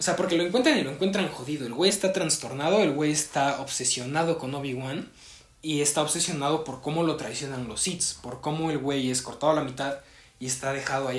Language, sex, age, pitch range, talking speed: Spanish, male, 20-39, 130-155 Hz, 220 wpm